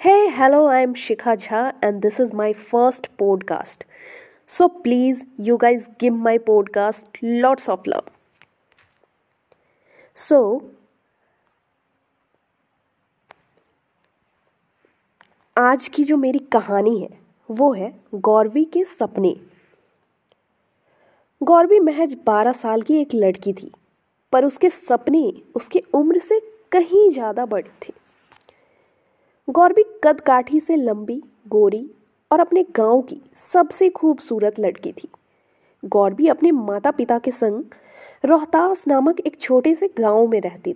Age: 20-39